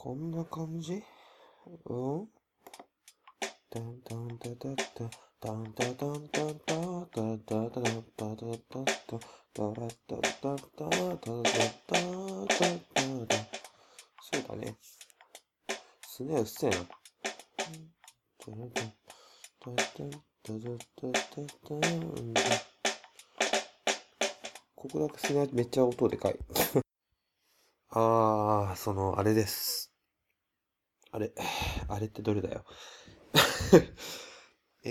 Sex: male